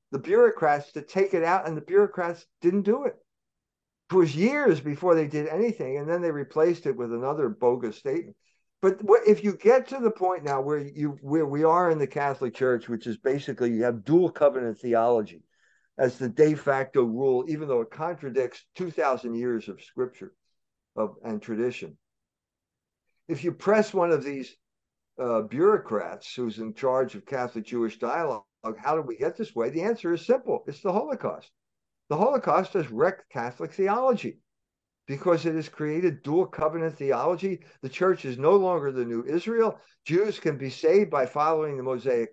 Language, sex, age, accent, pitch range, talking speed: English, male, 60-79, American, 140-195 Hz, 180 wpm